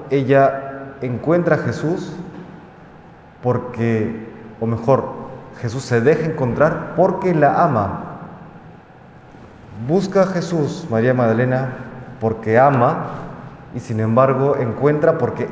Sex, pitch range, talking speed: male, 115-145 Hz, 100 wpm